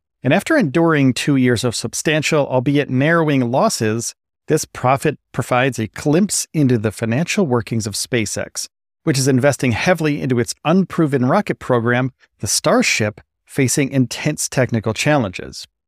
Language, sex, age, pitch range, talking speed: English, male, 40-59, 115-150 Hz, 135 wpm